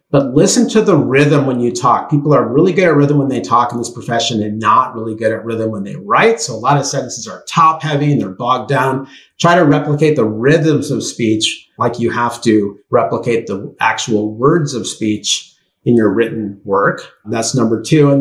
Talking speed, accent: 220 wpm, American